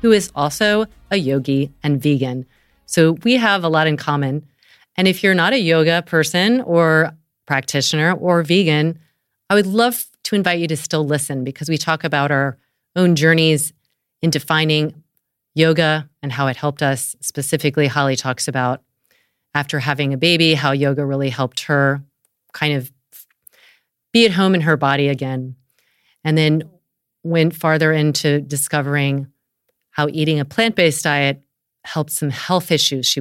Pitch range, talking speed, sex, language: 140-165 Hz, 160 wpm, female, English